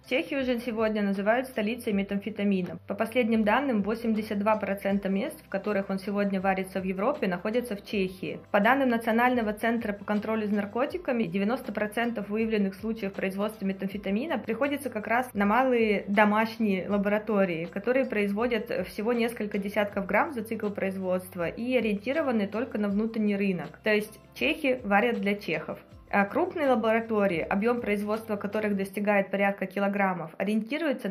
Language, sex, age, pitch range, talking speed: Russian, female, 20-39, 195-230 Hz, 135 wpm